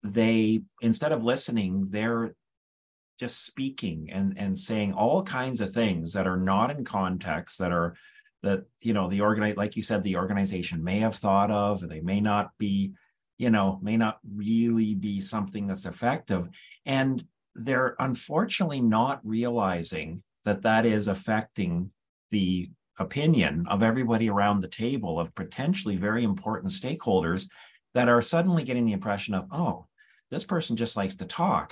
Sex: male